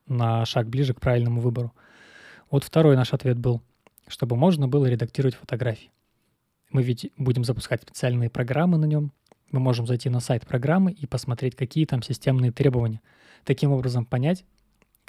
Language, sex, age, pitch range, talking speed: Russian, male, 20-39, 120-140 Hz, 155 wpm